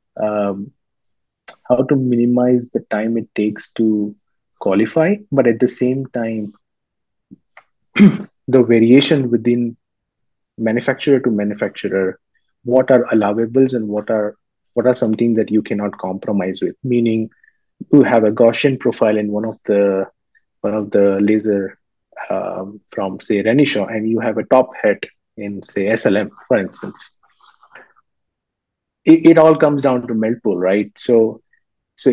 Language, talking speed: English, 140 wpm